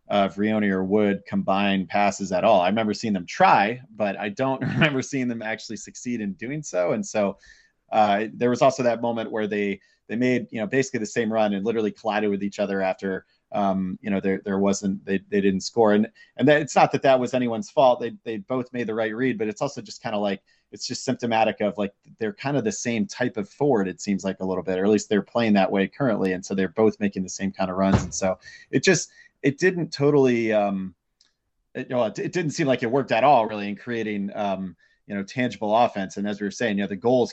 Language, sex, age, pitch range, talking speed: English, male, 30-49, 100-125 Hz, 255 wpm